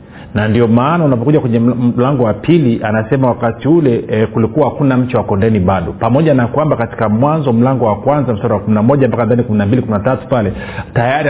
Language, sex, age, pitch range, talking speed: Swahili, male, 40-59, 105-135 Hz, 165 wpm